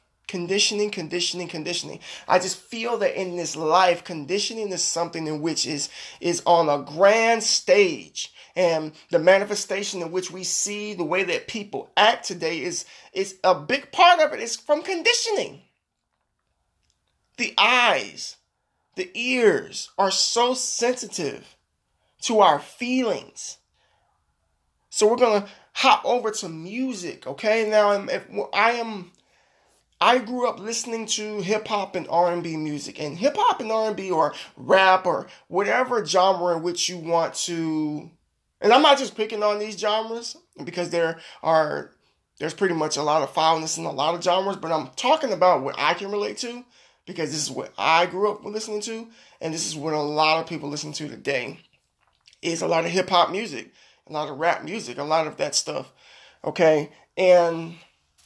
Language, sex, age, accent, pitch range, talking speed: English, male, 20-39, American, 165-220 Hz, 165 wpm